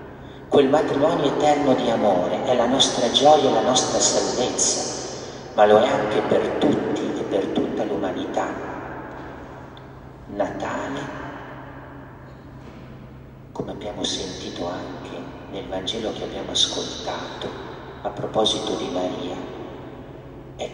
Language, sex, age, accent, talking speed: Italian, male, 40-59, native, 105 wpm